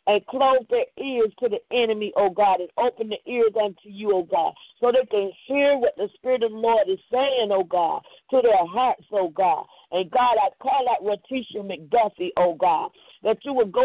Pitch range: 205-270 Hz